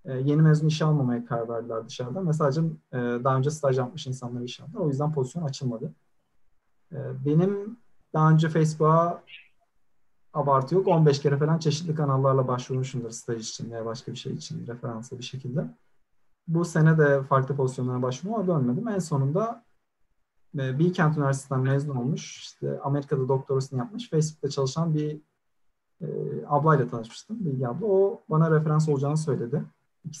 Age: 40-59